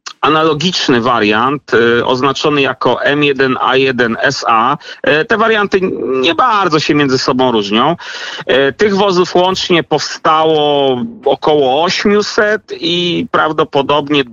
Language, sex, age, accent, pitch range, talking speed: Polish, male, 40-59, native, 120-160 Hz, 90 wpm